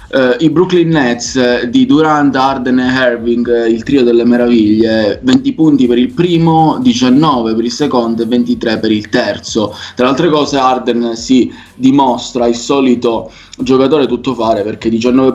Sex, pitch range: male, 115-160 Hz